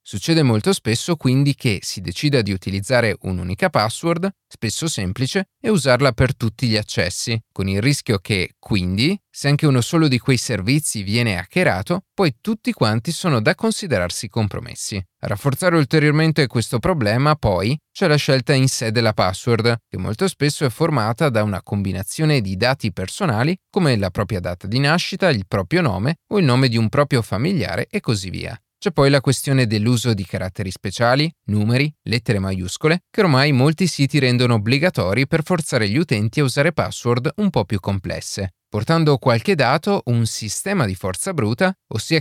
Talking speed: 170 wpm